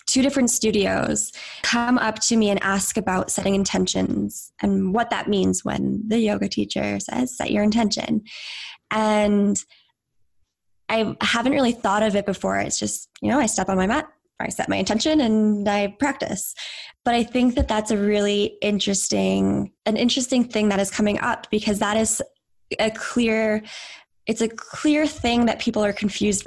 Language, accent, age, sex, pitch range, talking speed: English, American, 10-29, female, 195-235 Hz, 170 wpm